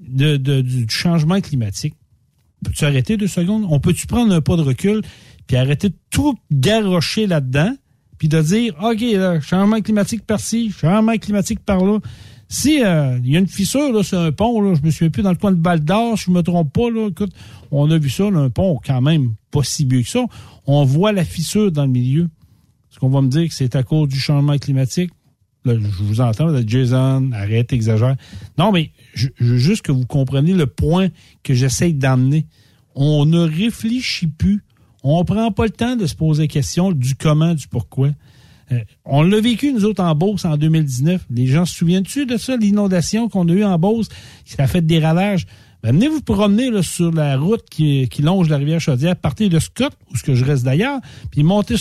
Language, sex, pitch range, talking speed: French, male, 135-200 Hz, 215 wpm